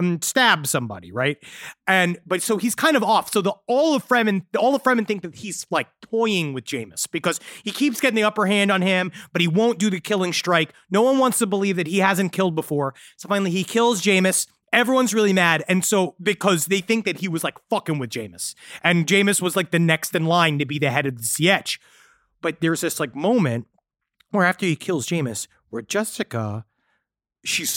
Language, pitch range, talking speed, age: English, 145-205 Hz, 215 wpm, 30-49